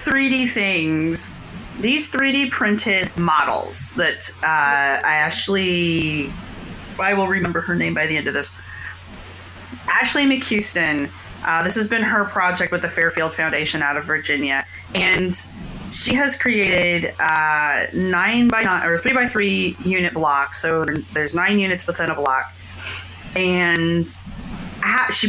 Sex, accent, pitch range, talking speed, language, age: female, American, 160-205 Hz, 140 wpm, English, 30-49